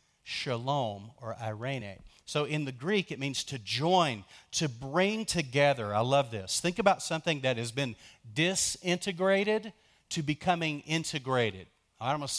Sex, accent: male, American